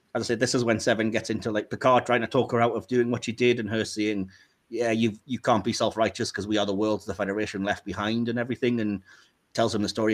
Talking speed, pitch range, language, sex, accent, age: 260 wpm, 110-125 Hz, English, male, British, 30-49